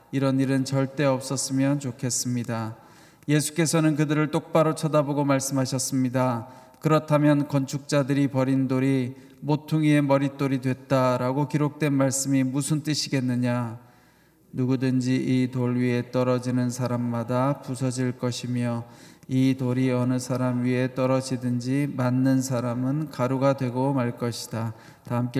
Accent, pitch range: native, 125-140 Hz